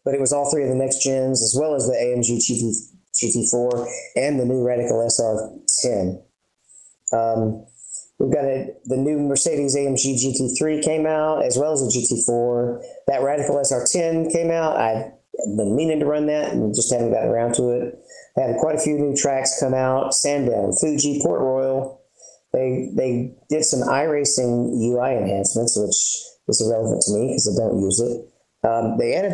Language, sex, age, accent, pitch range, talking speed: English, male, 40-59, American, 115-140 Hz, 180 wpm